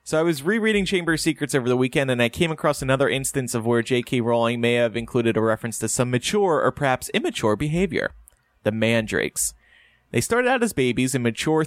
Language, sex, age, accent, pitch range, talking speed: English, male, 30-49, American, 120-155 Hz, 210 wpm